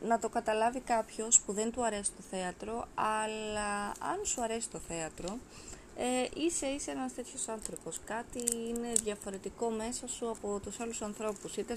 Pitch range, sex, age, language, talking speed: 180-235 Hz, female, 20-39, Greek, 160 wpm